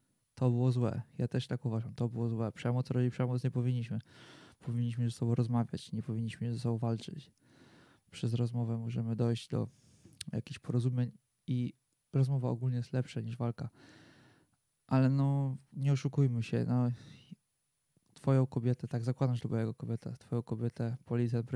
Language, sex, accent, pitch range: Polish, male, native, 120-140 Hz